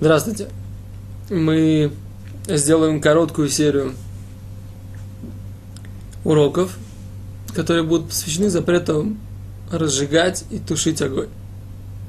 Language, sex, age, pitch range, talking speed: Russian, male, 20-39, 100-155 Hz, 70 wpm